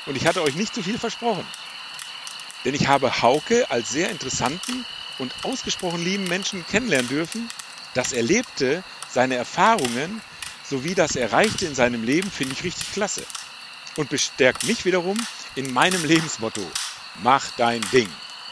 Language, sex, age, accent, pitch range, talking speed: German, male, 50-69, German, 130-205 Hz, 145 wpm